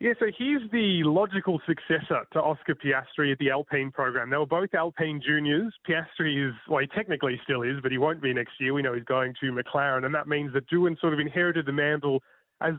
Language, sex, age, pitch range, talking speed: English, male, 20-39, 135-180 Hz, 225 wpm